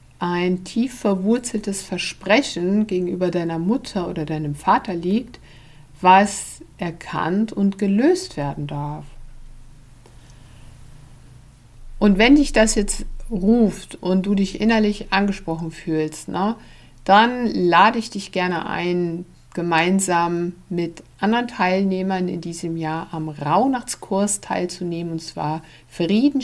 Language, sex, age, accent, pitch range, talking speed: German, female, 60-79, German, 160-205 Hz, 110 wpm